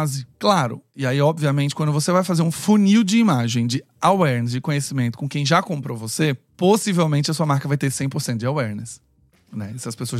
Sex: male